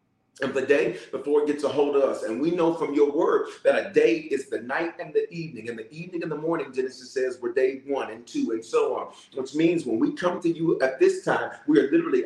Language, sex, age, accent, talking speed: English, male, 40-59, American, 265 wpm